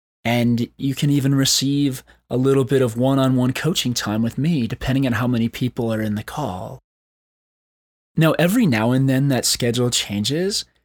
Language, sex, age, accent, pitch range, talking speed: English, male, 20-39, American, 105-145 Hz, 170 wpm